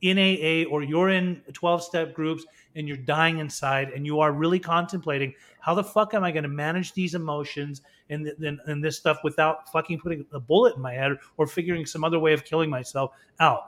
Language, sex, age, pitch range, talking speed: English, male, 30-49, 150-180 Hz, 220 wpm